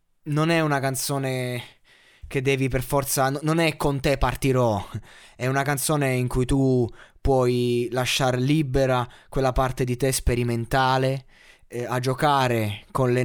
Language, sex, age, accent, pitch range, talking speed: Italian, male, 20-39, native, 115-140 Hz, 145 wpm